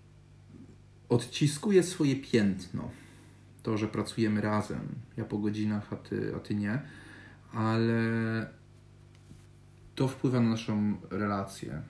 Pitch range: 100-120 Hz